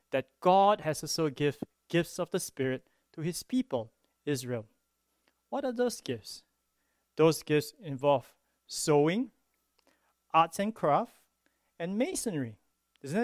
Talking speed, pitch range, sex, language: 120 wpm, 140-215 Hz, male, English